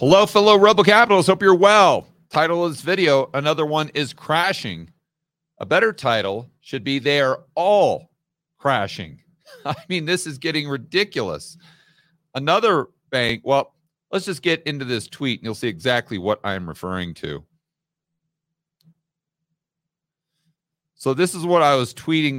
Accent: American